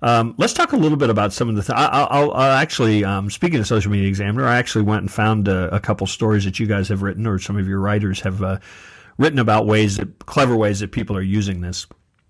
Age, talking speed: 50-69, 260 wpm